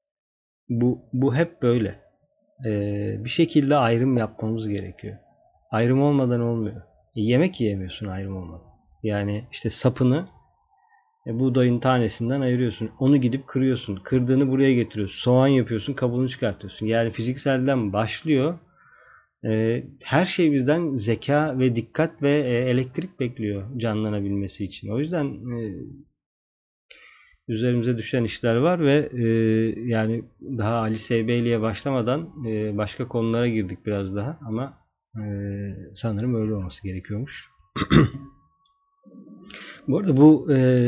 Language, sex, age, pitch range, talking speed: Turkish, male, 40-59, 110-135 Hz, 120 wpm